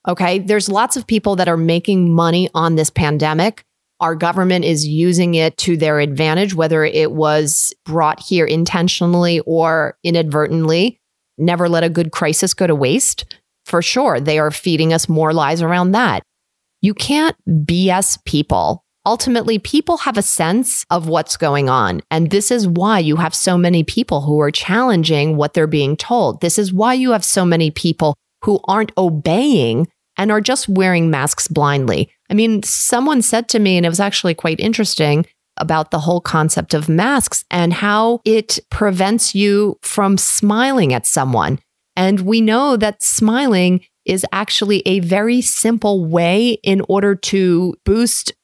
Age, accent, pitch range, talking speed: 30-49, American, 160-215 Hz, 165 wpm